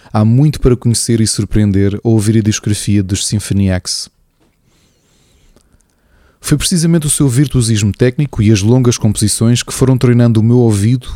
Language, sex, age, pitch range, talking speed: Portuguese, male, 20-39, 100-120 Hz, 155 wpm